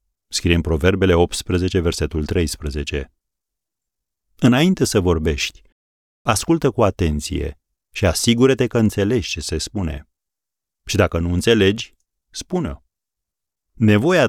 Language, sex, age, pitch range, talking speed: Romanian, male, 40-59, 80-105 Hz, 110 wpm